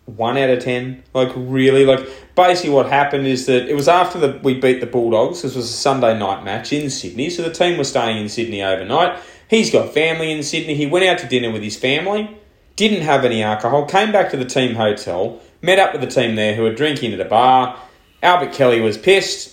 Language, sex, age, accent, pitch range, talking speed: English, male, 30-49, Australian, 120-175 Hz, 230 wpm